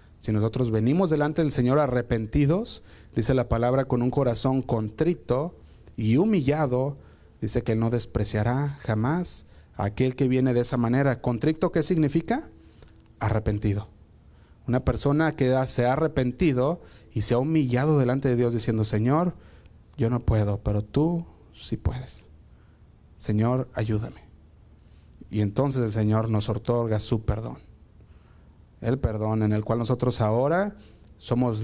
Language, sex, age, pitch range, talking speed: Spanish, male, 30-49, 110-140 Hz, 140 wpm